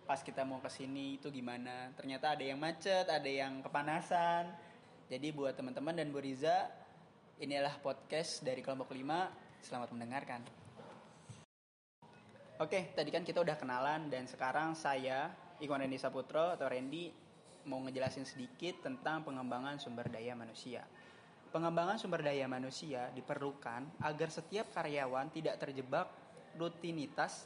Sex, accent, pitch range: male, native, 130-160 Hz